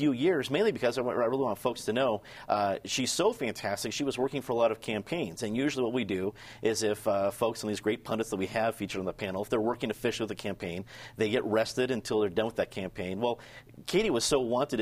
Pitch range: 100-120 Hz